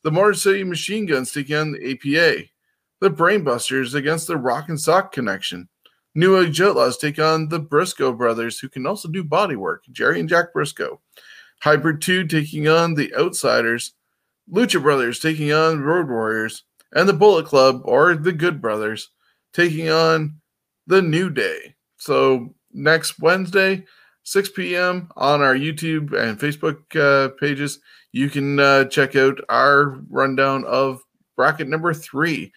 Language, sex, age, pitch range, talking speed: English, male, 20-39, 125-160 Hz, 155 wpm